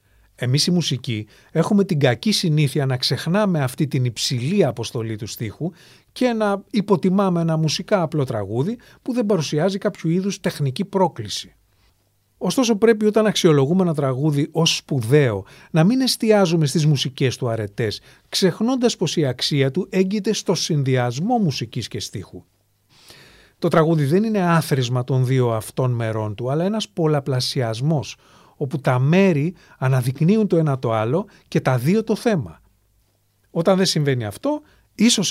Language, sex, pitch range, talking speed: English, male, 125-190 Hz, 145 wpm